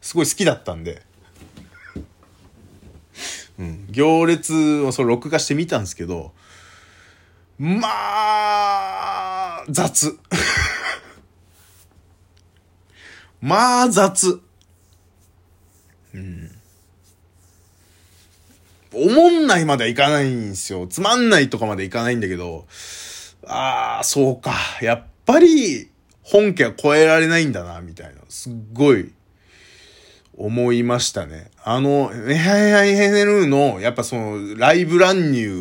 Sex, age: male, 20-39